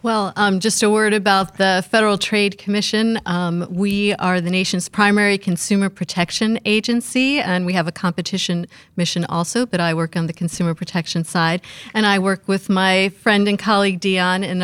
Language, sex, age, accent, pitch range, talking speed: English, female, 40-59, American, 175-215 Hz, 180 wpm